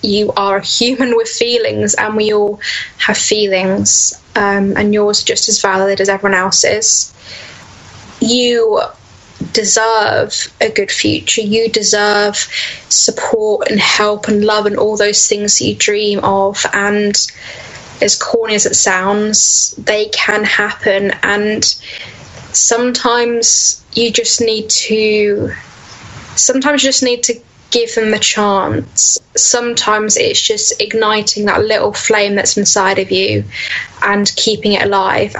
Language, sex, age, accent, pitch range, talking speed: English, female, 10-29, British, 205-230 Hz, 135 wpm